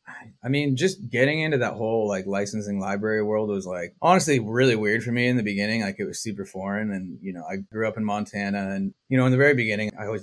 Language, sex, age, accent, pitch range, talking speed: English, male, 20-39, American, 100-130 Hz, 250 wpm